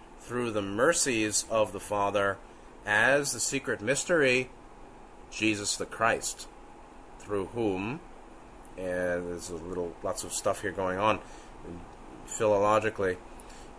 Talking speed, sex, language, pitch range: 115 wpm, male, English, 100-125 Hz